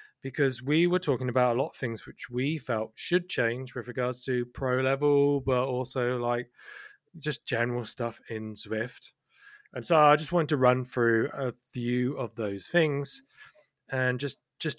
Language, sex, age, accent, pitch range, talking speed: English, male, 20-39, British, 125-150 Hz, 175 wpm